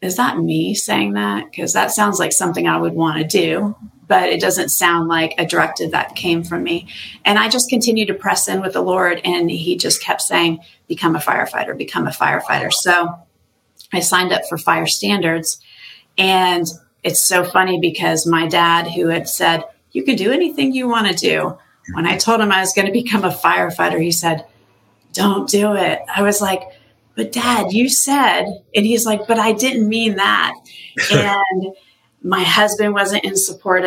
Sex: female